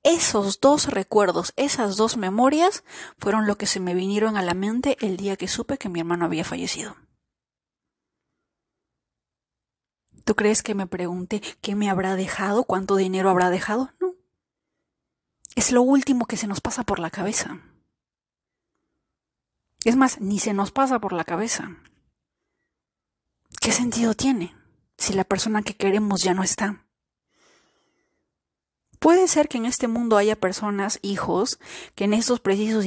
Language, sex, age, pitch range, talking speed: Spanish, female, 30-49, 195-245 Hz, 150 wpm